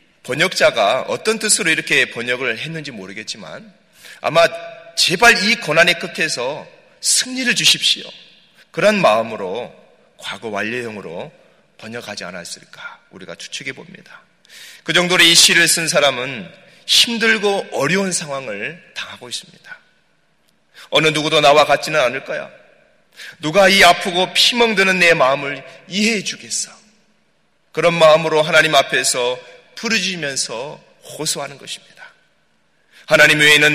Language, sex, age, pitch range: Korean, male, 30-49, 140-210 Hz